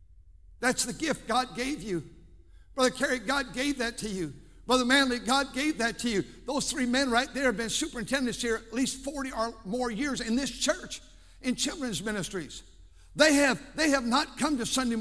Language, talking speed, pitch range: English, 195 wpm, 195-275 Hz